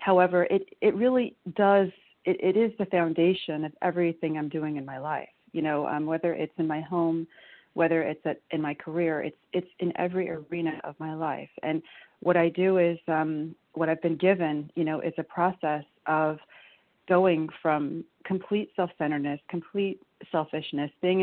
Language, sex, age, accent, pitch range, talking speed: English, female, 40-59, American, 160-185 Hz, 175 wpm